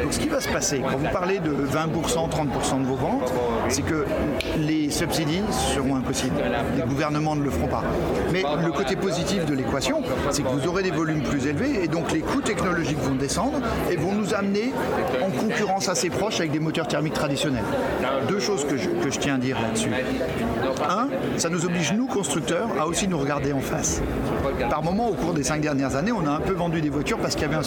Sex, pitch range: male, 140-195 Hz